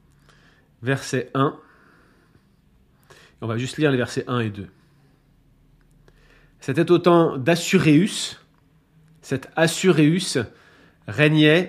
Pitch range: 125-150 Hz